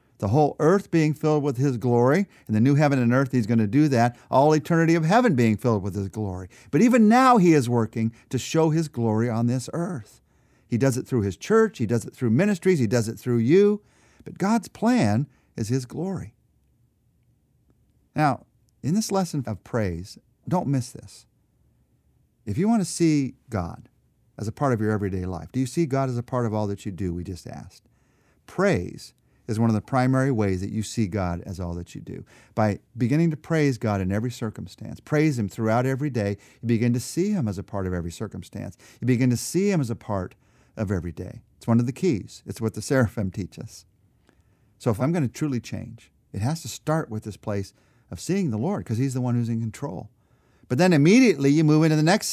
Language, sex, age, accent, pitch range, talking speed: English, male, 50-69, American, 110-145 Hz, 220 wpm